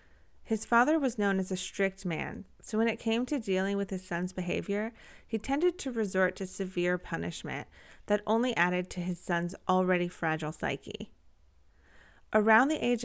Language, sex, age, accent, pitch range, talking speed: English, female, 30-49, American, 180-230 Hz, 170 wpm